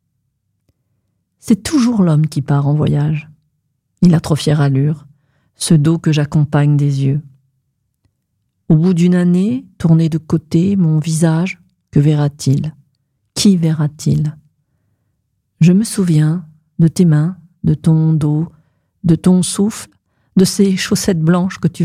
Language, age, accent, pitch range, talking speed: French, 40-59, French, 140-180 Hz, 135 wpm